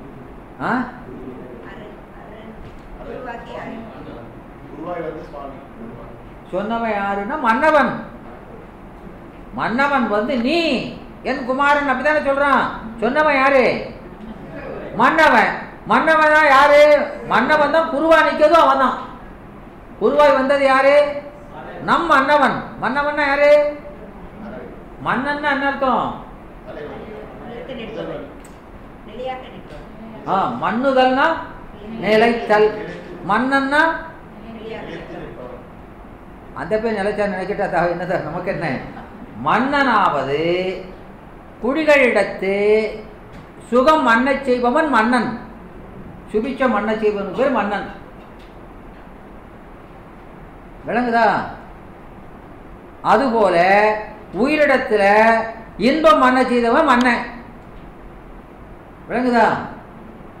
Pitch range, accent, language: 210-285 Hz, native, Tamil